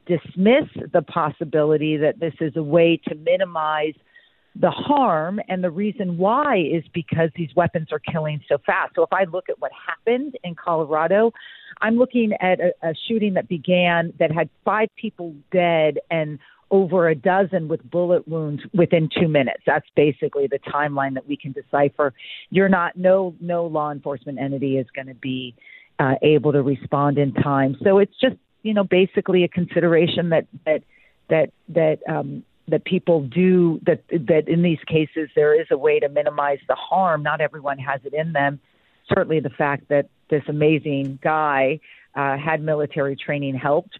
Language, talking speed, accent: English, 175 wpm, American